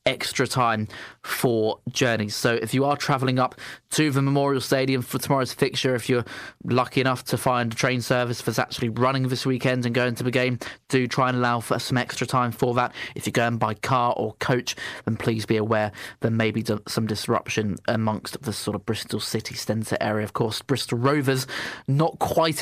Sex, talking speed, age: male, 200 wpm, 20-39